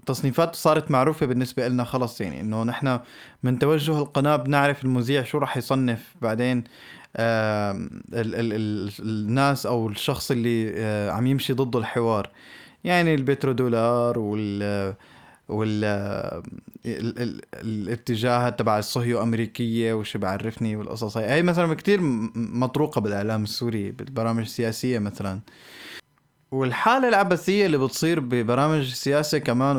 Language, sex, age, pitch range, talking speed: Arabic, male, 20-39, 115-135 Hz, 115 wpm